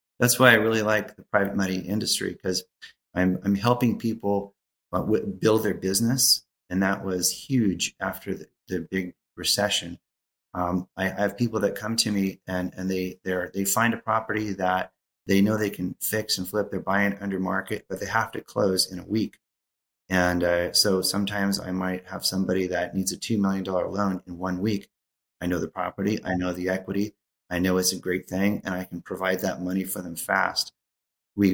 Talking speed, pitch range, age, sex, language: 200 wpm, 90-105 Hz, 30-49, male, English